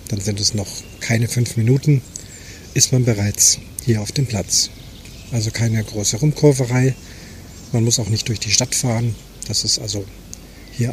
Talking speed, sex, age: 165 wpm, male, 40-59